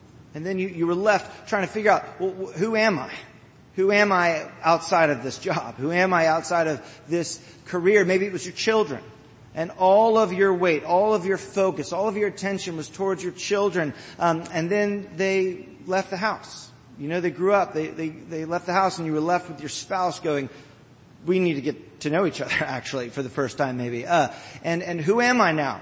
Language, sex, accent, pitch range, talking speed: English, male, American, 145-195 Hz, 225 wpm